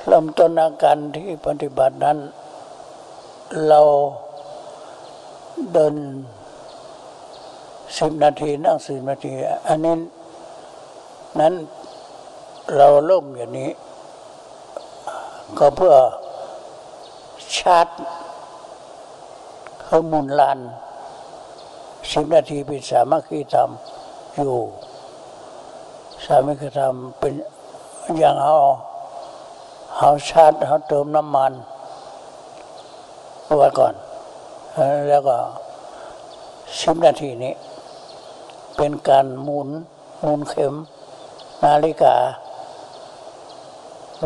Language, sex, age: Thai, male, 60-79